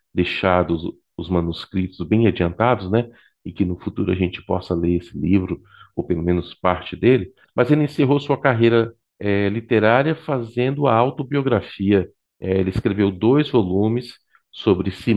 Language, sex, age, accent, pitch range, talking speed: Portuguese, male, 50-69, Brazilian, 95-125 Hz, 150 wpm